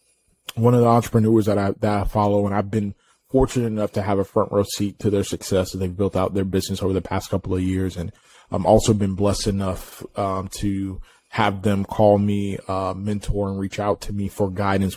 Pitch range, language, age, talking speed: 100-110 Hz, English, 20-39, 225 wpm